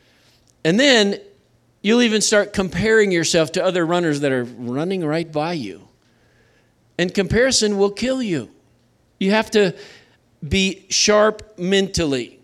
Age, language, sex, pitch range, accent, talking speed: 50-69, English, male, 140-205 Hz, American, 130 wpm